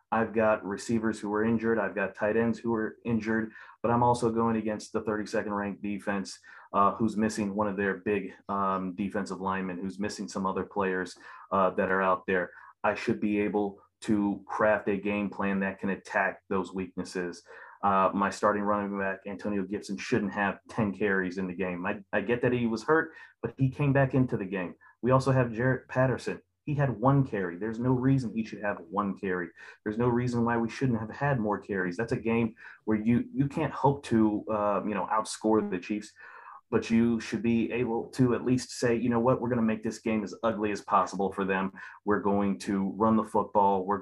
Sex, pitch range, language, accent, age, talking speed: male, 100-115 Hz, English, American, 30-49, 215 wpm